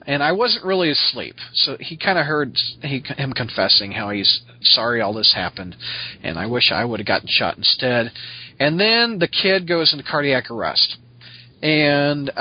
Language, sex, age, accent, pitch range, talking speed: English, male, 40-59, American, 120-145 Hz, 175 wpm